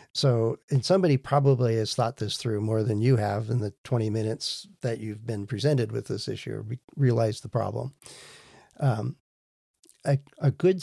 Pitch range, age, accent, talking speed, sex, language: 120-140 Hz, 50-69, American, 170 wpm, male, English